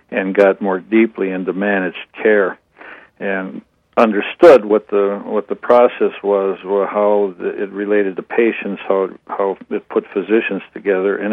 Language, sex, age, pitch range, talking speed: English, male, 60-79, 95-110 Hz, 155 wpm